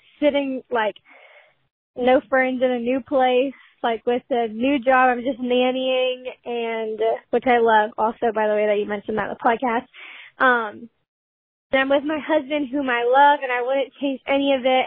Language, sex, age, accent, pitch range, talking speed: English, female, 10-29, American, 240-275 Hz, 185 wpm